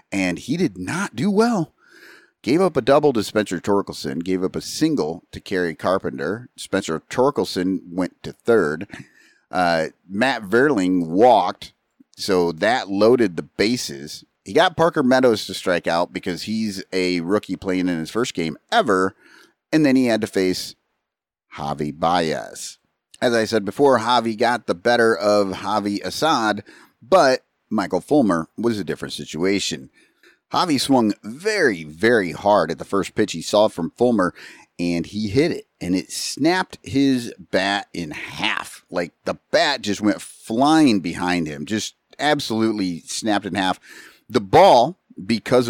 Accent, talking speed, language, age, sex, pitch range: American, 155 wpm, English, 30-49, male, 90-125 Hz